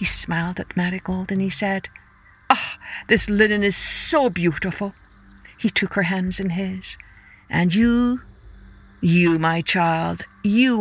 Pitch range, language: 170-225 Hz, English